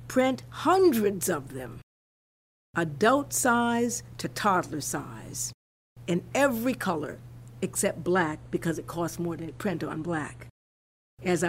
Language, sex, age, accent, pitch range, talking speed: English, female, 50-69, American, 155-210 Hz, 125 wpm